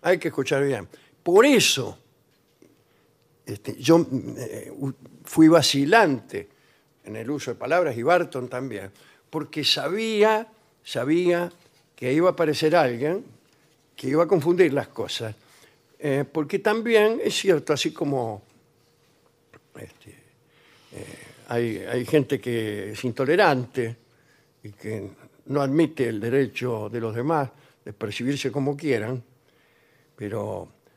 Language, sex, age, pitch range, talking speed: Spanish, male, 60-79, 125-170 Hz, 120 wpm